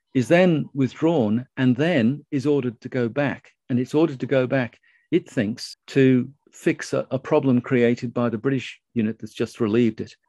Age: 50-69